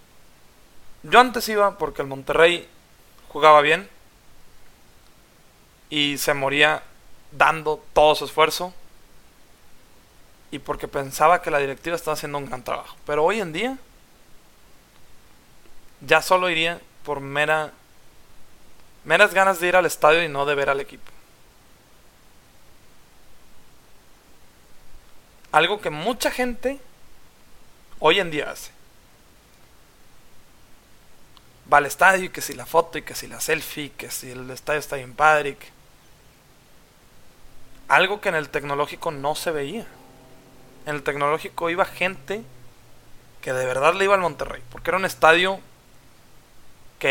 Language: Spanish